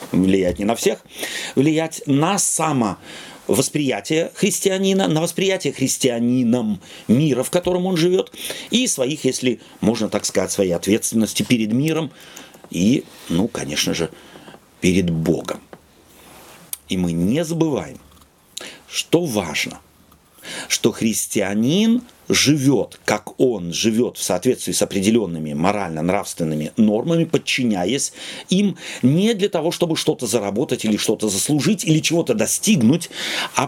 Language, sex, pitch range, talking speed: Russian, male, 115-170 Hz, 115 wpm